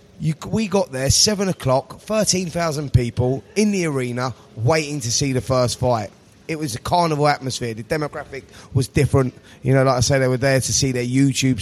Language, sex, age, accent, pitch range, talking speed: English, male, 20-39, British, 125-150 Hz, 195 wpm